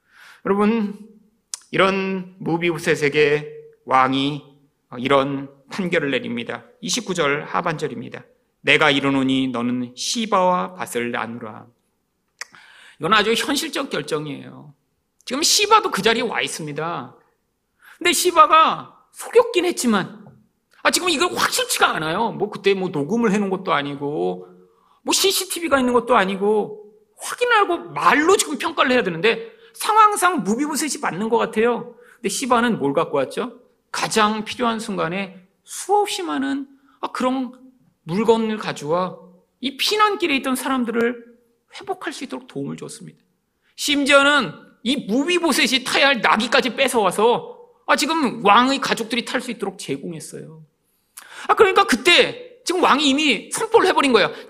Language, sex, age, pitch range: Korean, male, 40-59, 180-295 Hz